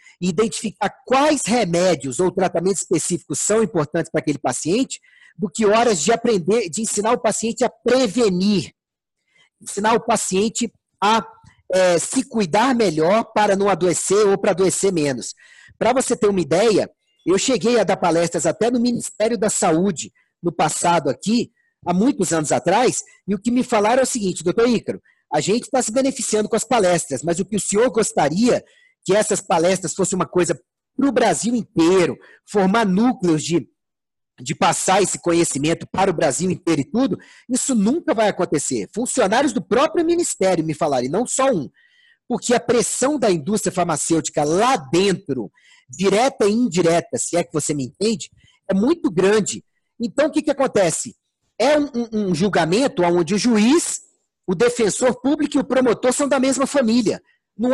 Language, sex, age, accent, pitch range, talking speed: Portuguese, male, 40-59, Brazilian, 175-240 Hz, 170 wpm